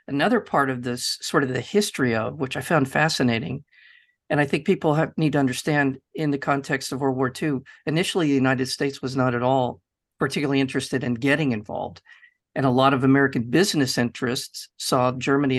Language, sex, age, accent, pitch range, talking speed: English, male, 50-69, American, 130-150 Hz, 190 wpm